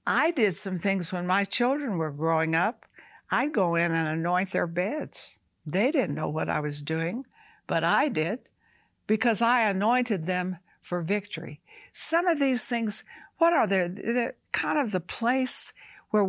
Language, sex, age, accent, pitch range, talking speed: English, female, 60-79, American, 180-260 Hz, 170 wpm